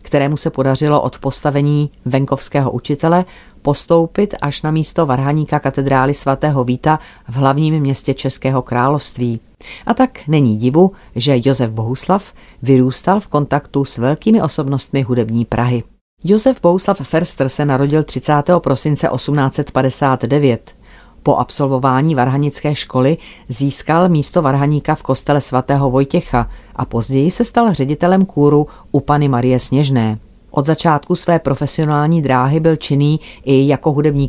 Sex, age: female, 40-59